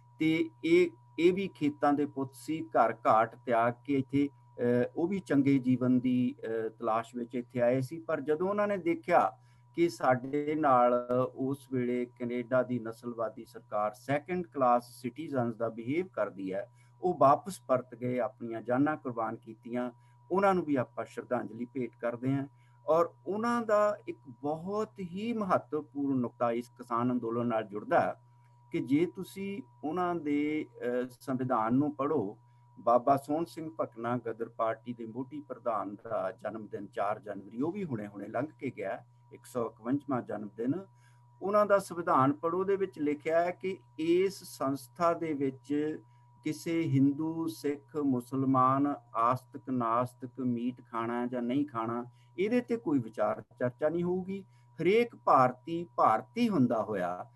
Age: 50-69